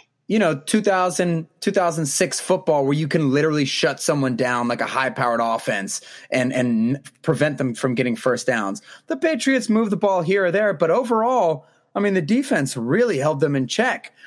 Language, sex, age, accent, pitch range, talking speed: English, male, 20-39, American, 135-185 Hz, 180 wpm